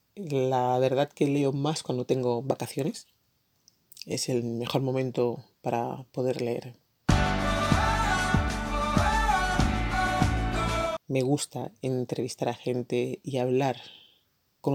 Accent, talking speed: Spanish, 95 wpm